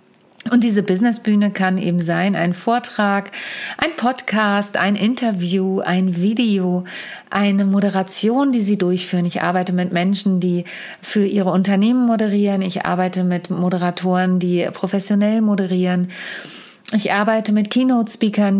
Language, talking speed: German, 125 wpm